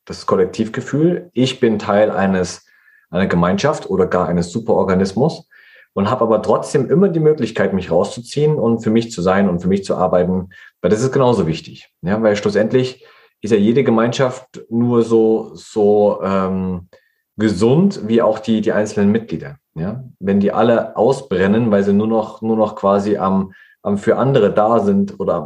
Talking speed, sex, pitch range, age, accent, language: 170 wpm, male, 95-115 Hz, 30-49, German, German